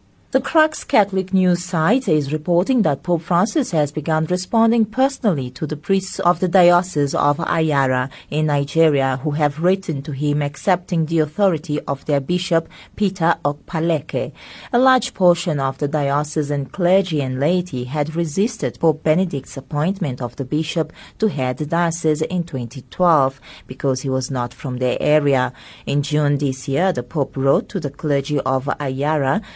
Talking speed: 160 wpm